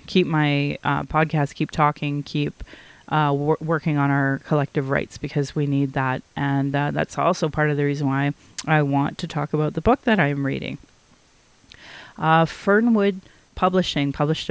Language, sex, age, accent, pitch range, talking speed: English, female, 30-49, American, 145-160 Hz, 165 wpm